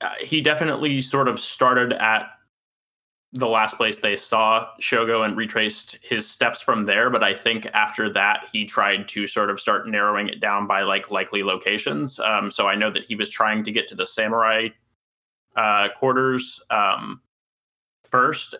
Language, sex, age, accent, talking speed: English, male, 20-39, American, 170 wpm